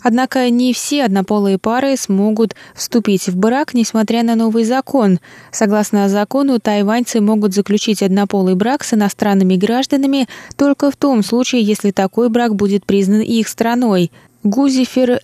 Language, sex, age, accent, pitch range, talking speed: Russian, female, 20-39, native, 185-235 Hz, 140 wpm